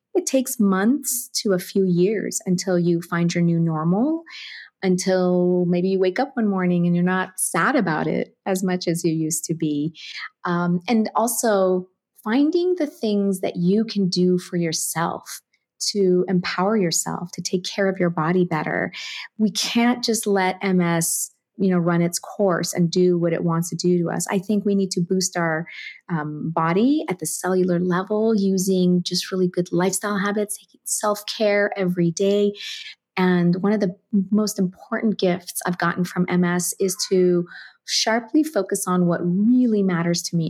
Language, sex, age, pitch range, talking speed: English, female, 30-49, 175-210 Hz, 175 wpm